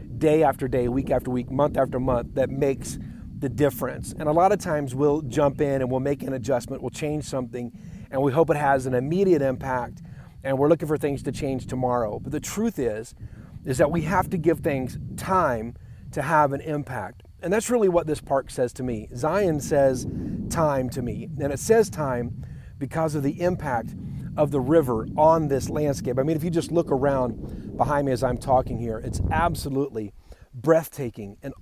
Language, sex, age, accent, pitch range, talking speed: English, male, 40-59, American, 125-155 Hz, 200 wpm